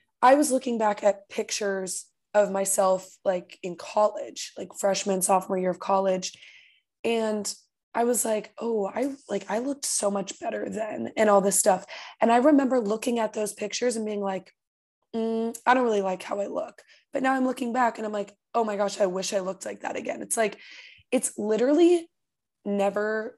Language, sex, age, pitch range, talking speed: English, female, 20-39, 195-230 Hz, 195 wpm